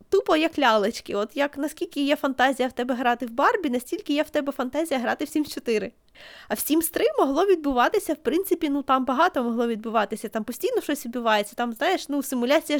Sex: female